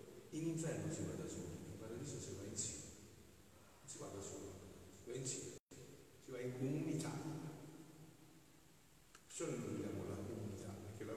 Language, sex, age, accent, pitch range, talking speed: Italian, male, 50-69, native, 105-150 Hz, 165 wpm